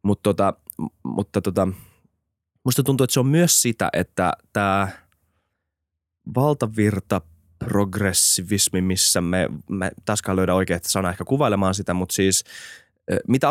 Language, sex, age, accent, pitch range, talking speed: Finnish, male, 20-39, native, 90-110 Hz, 120 wpm